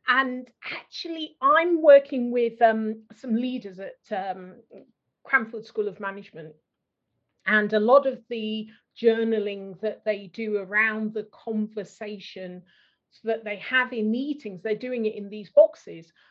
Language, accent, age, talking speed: English, British, 40-59, 140 wpm